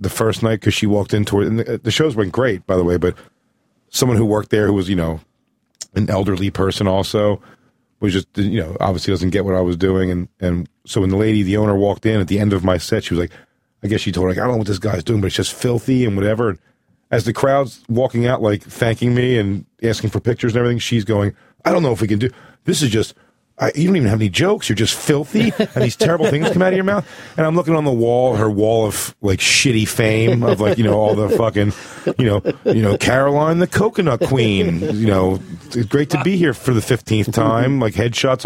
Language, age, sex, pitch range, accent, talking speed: English, 40-59, male, 100-130 Hz, American, 255 wpm